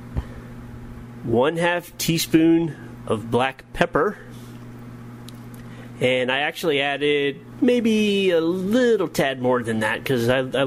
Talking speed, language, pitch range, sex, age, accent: 110 wpm, English, 120-140 Hz, male, 30-49, American